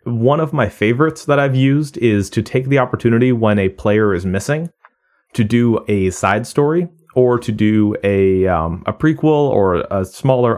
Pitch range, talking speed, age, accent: 100-130 Hz, 180 wpm, 30-49, American